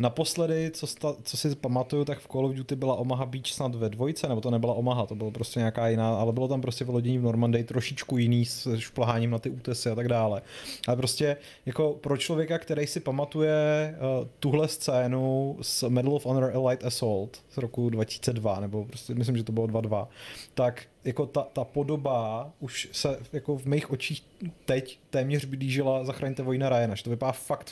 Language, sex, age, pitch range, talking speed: Czech, male, 30-49, 115-140 Hz, 200 wpm